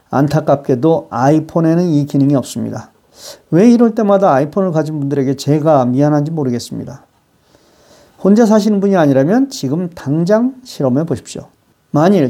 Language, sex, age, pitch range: Korean, male, 40-59, 140-215 Hz